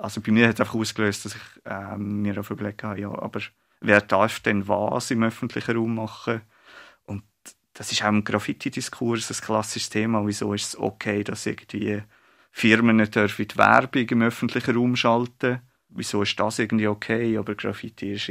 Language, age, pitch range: German, 30-49, 105-115 Hz